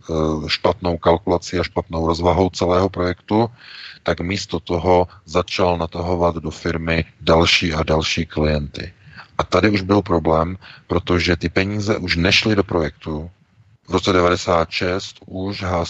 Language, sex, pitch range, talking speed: Czech, male, 85-95 Hz, 125 wpm